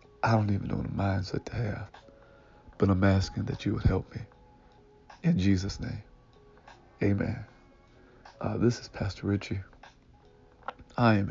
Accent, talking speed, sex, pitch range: American, 145 wpm, male, 95-115 Hz